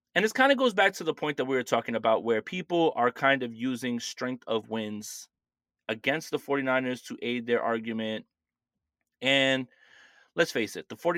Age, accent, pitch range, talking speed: 30-49, American, 130-170 Hz, 190 wpm